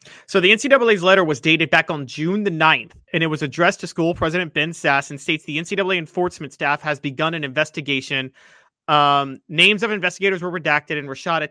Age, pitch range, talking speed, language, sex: 30-49, 150-200 Hz, 200 wpm, English, male